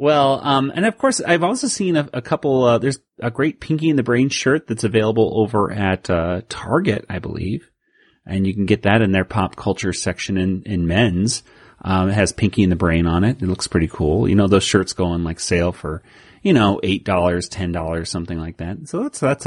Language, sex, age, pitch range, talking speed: English, male, 30-49, 95-120 Hz, 230 wpm